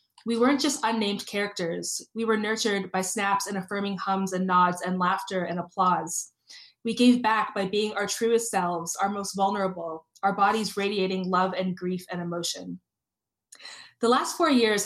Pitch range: 185-220 Hz